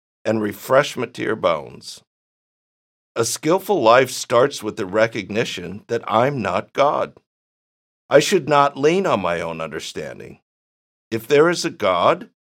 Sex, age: male, 50-69